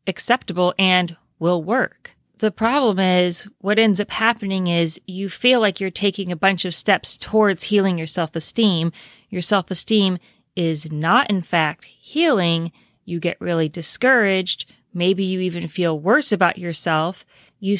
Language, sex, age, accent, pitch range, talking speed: English, female, 30-49, American, 180-220 Hz, 150 wpm